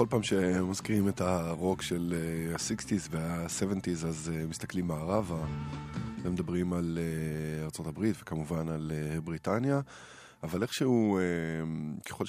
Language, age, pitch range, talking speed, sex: Hebrew, 20-39, 80-95 Hz, 100 wpm, male